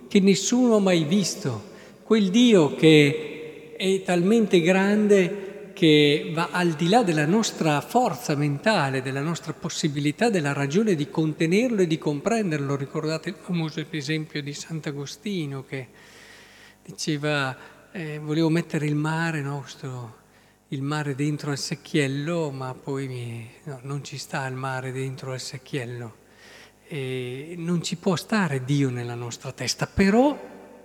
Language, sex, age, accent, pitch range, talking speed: Italian, male, 50-69, native, 140-195 Hz, 135 wpm